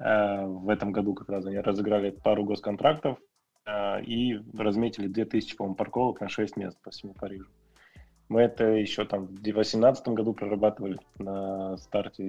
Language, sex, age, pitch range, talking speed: Russian, male, 20-39, 100-115 Hz, 150 wpm